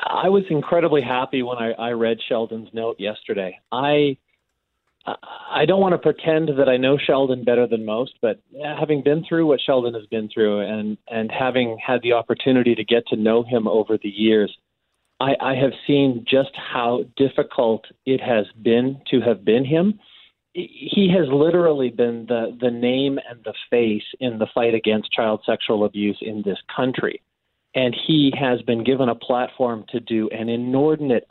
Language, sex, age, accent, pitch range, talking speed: English, male, 40-59, American, 115-140 Hz, 175 wpm